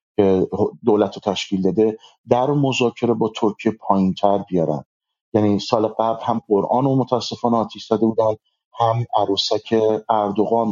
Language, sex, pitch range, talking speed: Persian, male, 100-115 Hz, 140 wpm